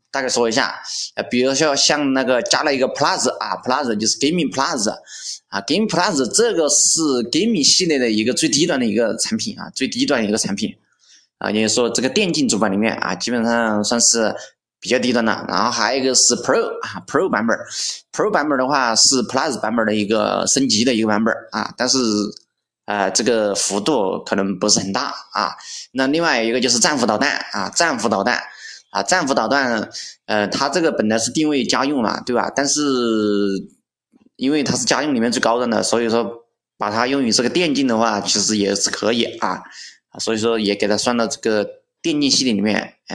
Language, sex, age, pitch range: Chinese, male, 20-39, 110-135 Hz